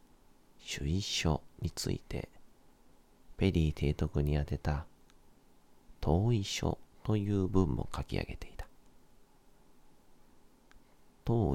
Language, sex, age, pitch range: Japanese, male, 40-59, 80-95 Hz